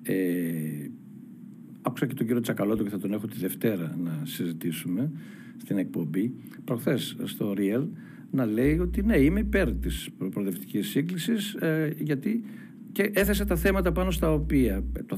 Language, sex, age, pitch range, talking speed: Greek, male, 60-79, 115-175 Hz, 150 wpm